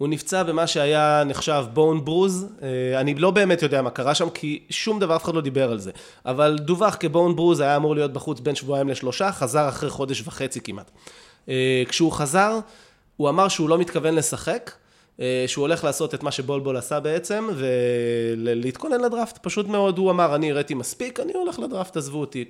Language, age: English, 20-39